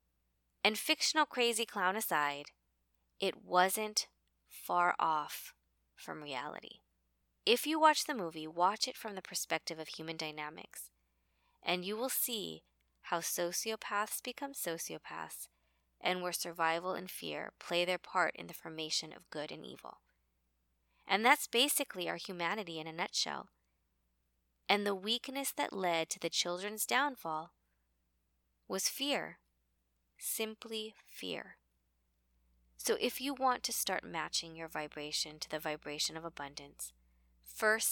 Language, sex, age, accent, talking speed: English, female, 20-39, American, 130 wpm